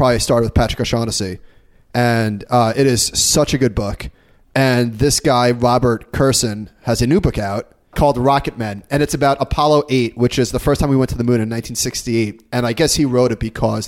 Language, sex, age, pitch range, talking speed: English, male, 30-49, 115-140 Hz, 215 wpm